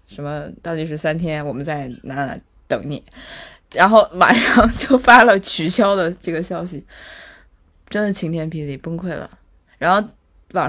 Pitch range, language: 140-185 Hz, Chinese